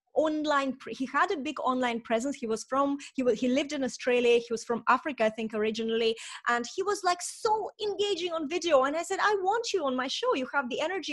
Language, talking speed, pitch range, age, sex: English, 230 wpm, 240-325 Hz, 20-39, female